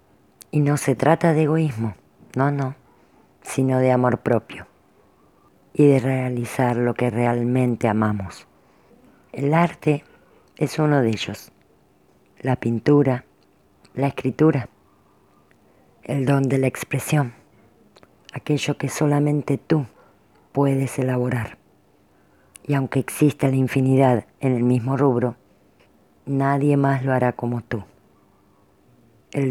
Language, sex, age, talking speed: Spanish, female, 50-69, 115 wpm